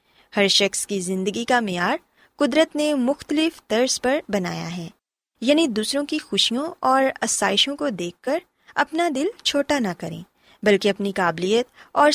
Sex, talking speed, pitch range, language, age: female, 155 wpm, 195-295 Hz, Urdu, 20-39